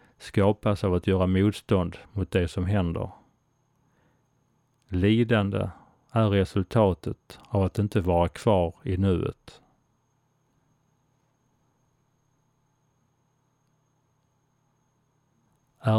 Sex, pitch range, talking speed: male, 95-135 Hz, 75 wpm